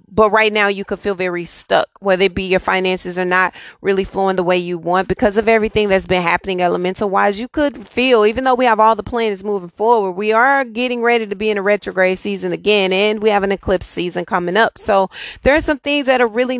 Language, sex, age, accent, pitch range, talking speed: English, female, 30-49, American, 190-230 Hz, 245 wpm